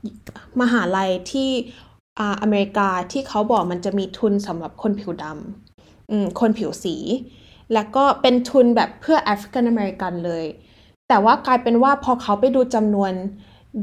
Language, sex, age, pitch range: Thai, female, 10-29, 195-245 Hz